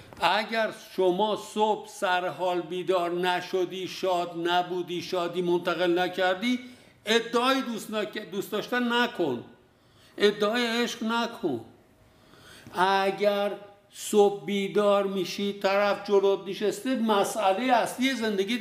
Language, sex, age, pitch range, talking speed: Persian, male, 60-79, 185-240 Hz, 95 wpm